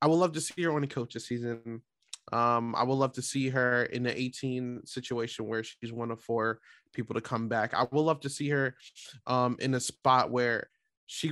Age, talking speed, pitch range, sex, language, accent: 20-39, 230 wpm, 120-140 Hz, male, English, American